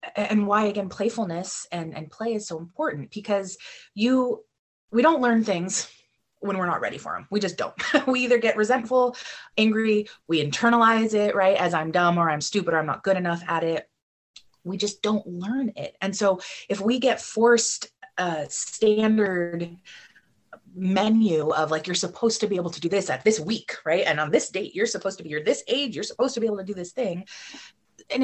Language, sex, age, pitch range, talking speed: English, female, 30-49, 180-230 Hz, 205 wpm